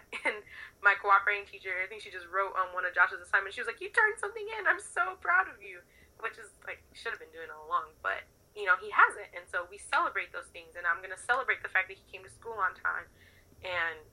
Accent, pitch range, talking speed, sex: American, 170-275 Hz, 265 wpm, female